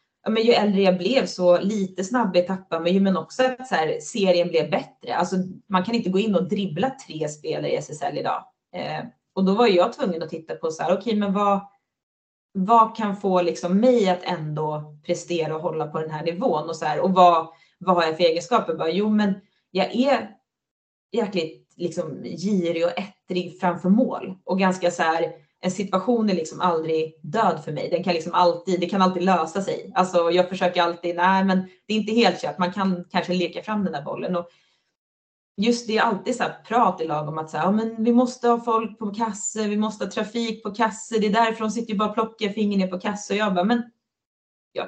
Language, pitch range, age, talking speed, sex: Swedish, 175-220 Hz, 20-39, 230 wpm, female